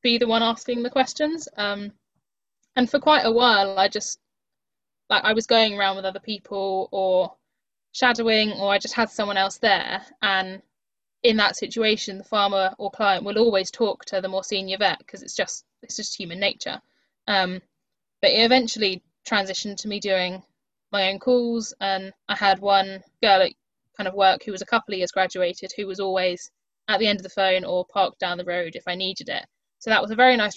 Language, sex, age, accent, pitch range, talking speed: English, female, 10-29, British, 190-225 Hz, 205 wpm